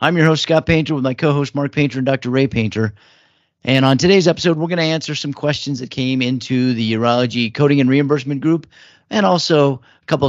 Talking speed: 215 wpm